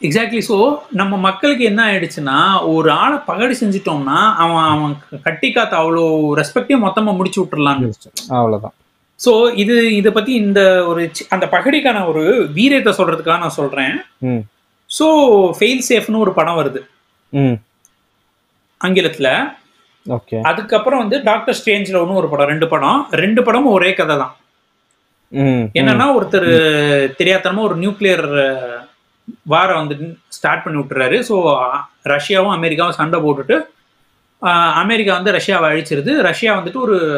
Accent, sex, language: native, male, Tamil